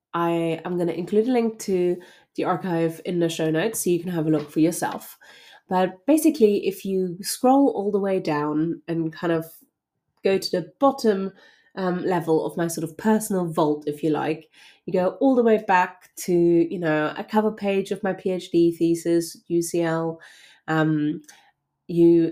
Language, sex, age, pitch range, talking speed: English, female, 30-49, 160-190 Hz, 185 wpm